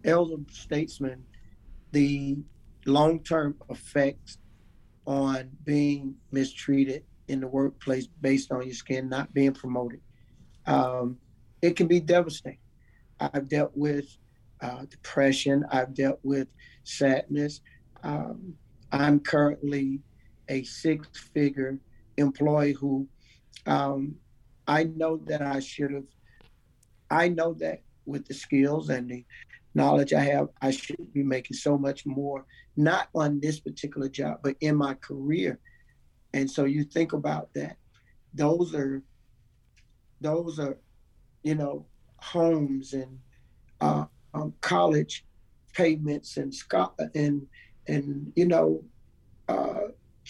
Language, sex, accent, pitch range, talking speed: English, male, American, 130-150 Hz, 115 wpm